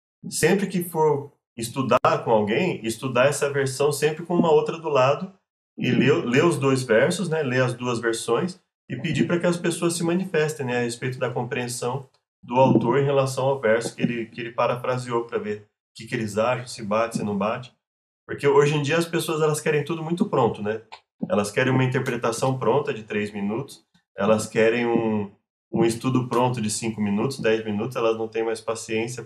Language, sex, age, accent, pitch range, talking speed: Portuguese, male, 20-39, Brazilian, 115-145 Hz, 200 wpm